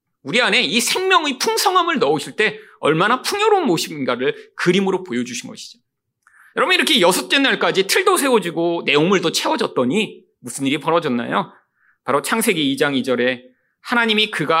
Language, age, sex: Korean, 40-59, male